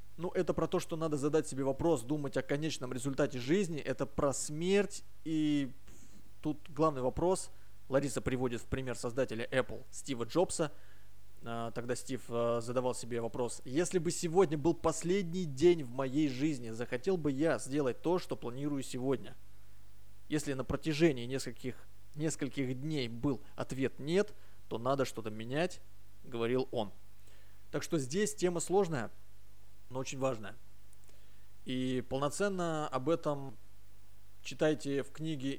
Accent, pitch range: native, 105-155 Hz